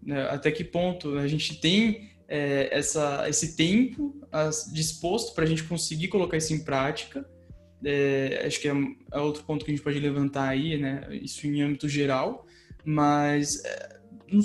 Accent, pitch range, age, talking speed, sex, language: Brazilian, 155-205 Hz, 10-29, 160 wpm, male, Portuguese